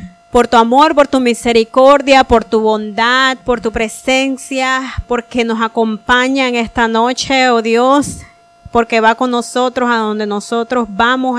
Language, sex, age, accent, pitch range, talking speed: Spanish, female, 30-49, American, 230-265 Hz, 150 wpm